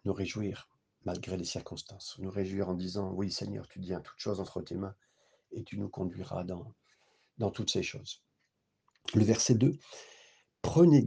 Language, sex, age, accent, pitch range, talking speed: French, male, 50-69, French, 100-135 Hz, 170 wpm